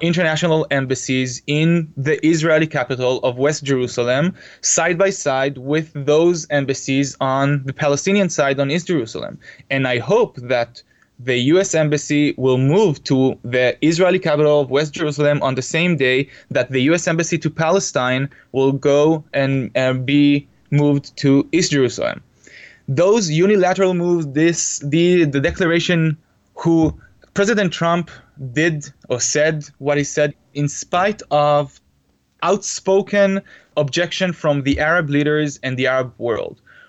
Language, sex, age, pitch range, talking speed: English, male, 20-39, 135-170 Hz, 140 wpm